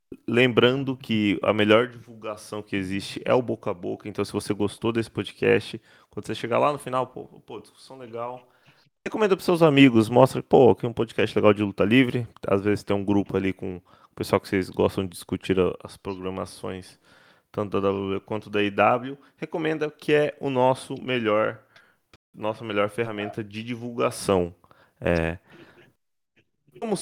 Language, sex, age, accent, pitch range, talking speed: Portuguese, male, 20-39, Brazilian, 100-125 Hz, 170 wpm